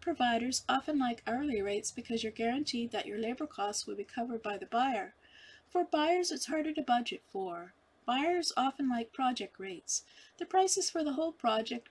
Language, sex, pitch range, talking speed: English, female, 225-295 Hz, 185 wpm